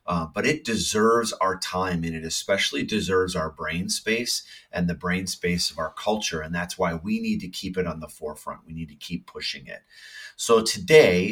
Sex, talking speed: male, 205 wpm